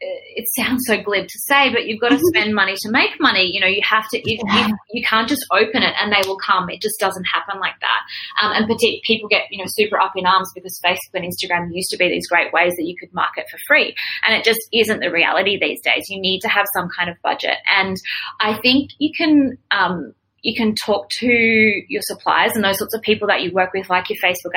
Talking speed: 250 wpm